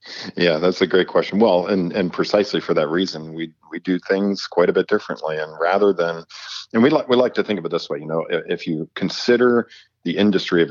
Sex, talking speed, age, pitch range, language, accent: male, 235 wpm, 40-59, 80-100 Hz, English, American